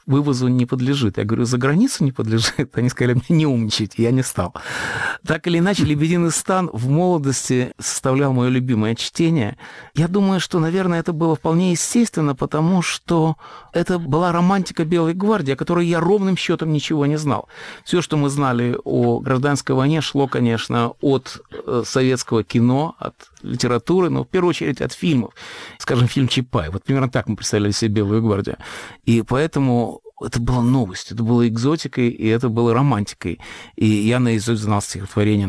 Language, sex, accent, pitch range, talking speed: Russian, male, native, 110-145 Hz, 165 wpm